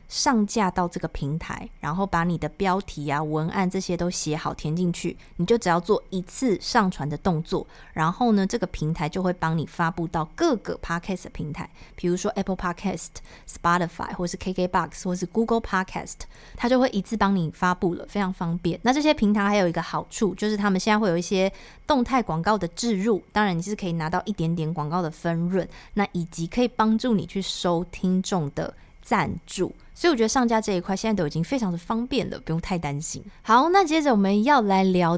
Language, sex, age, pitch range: Chinese, female, 20-39, 170-215 Hz